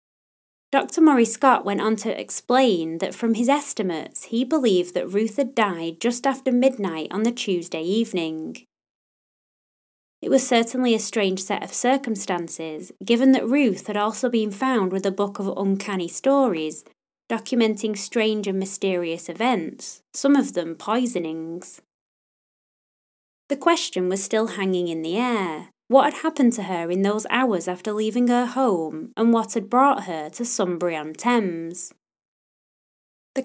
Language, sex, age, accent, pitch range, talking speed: English, female, 20-39, British, 180-255 Hz, 150 wpm